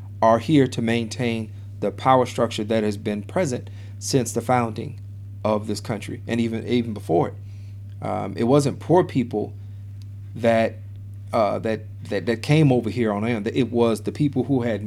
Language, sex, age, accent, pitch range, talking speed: English, male, 40-59, American, 100-125 Hz, 175 wpm